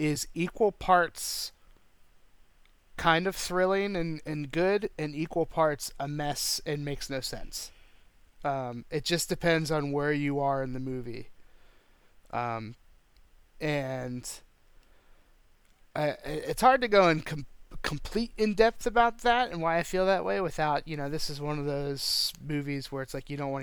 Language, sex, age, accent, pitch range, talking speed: English, male, 30-49, American, 125-165 Hz, 160 wpm